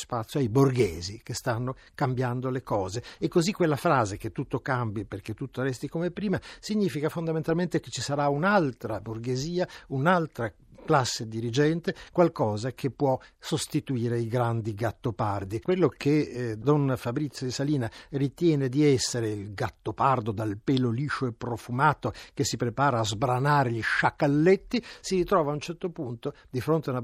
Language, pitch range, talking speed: Italian, 120-160 Hz, 160 wpm